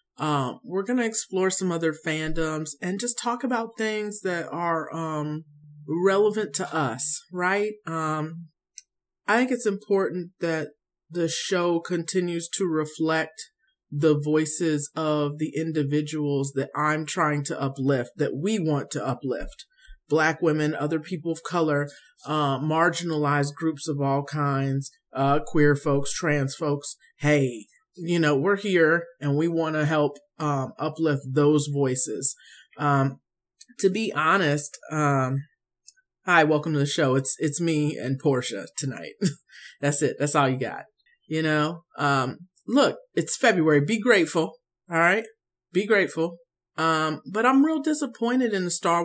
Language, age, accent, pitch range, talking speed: English, 40-59, American, 145-185 Hz, 145 wpm